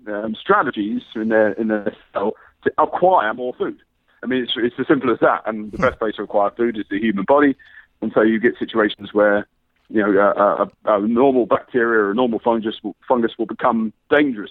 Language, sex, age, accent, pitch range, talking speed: English, male, 40-59, British, 110-150 Hz, 215 wpm